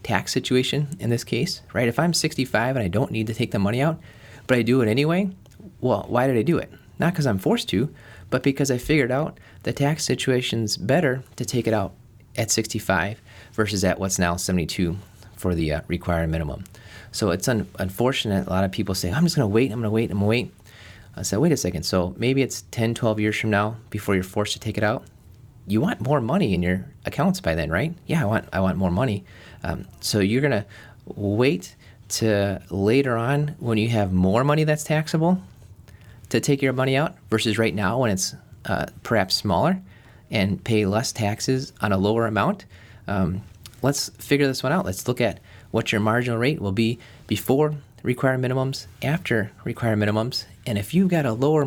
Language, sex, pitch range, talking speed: English, male, 100-130 Hz, 205 wpm